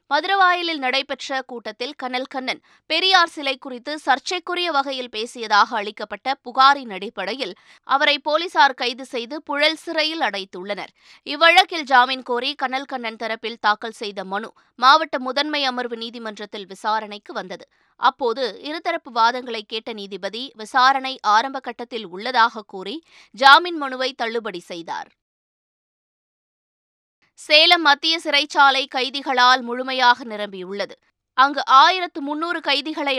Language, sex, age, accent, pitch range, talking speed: Tamil, female, 20-39, native, 230-290 Hz, 105 wpm